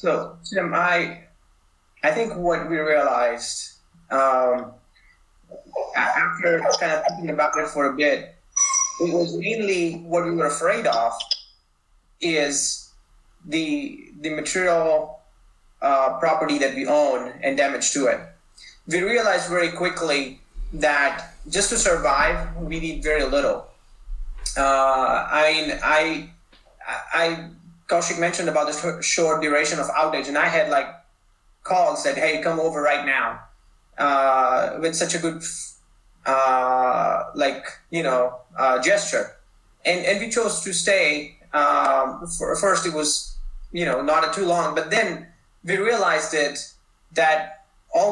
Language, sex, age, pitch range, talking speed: English, male, 30-49, 135-175 Hz, 140 wpm